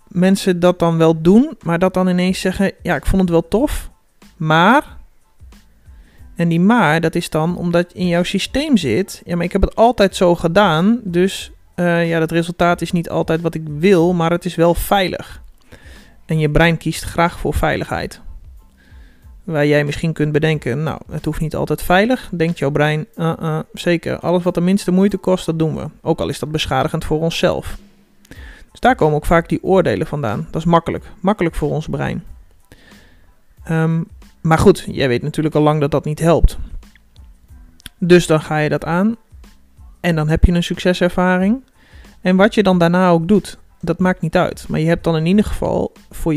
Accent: Dutch